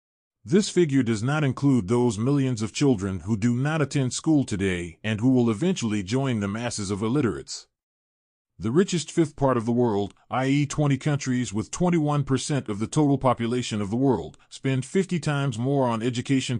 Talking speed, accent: 175 wpm, American